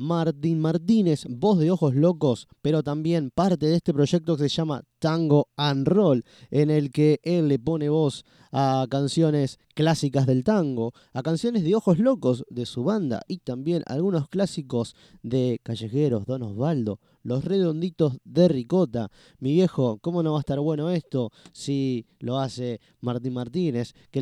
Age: 20-39